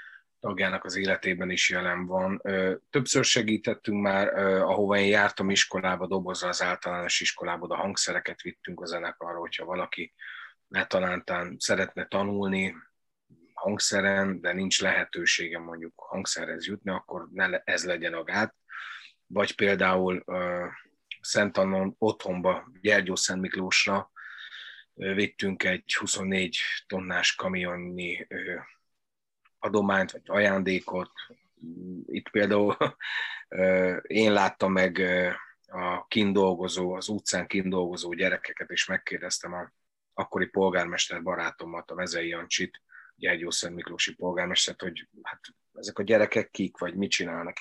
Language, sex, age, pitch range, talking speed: Hungarian, male, 30-49, 90-100 Hz, 115 wpm